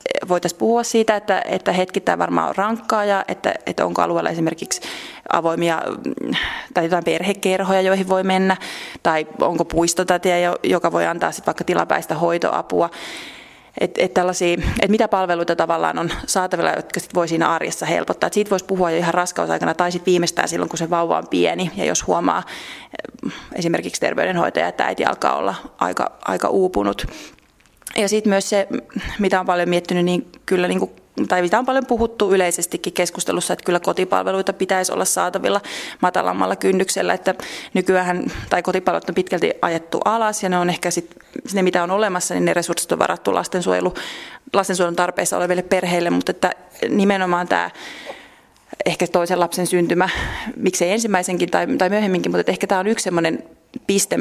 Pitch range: 175-195 Hz